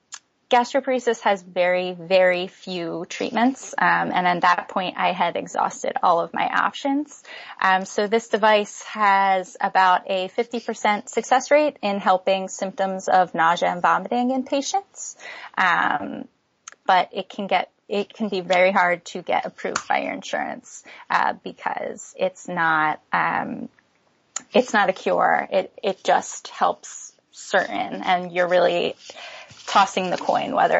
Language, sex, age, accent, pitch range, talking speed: English, female, 20-39, American, 180-230 Hz, 145 wpm